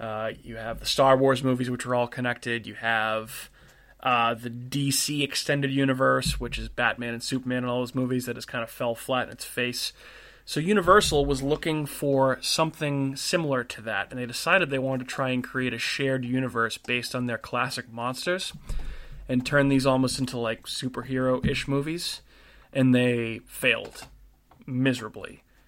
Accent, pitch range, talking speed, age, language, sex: American, 120-135 Hz, 175 wpm, 20-39, English, male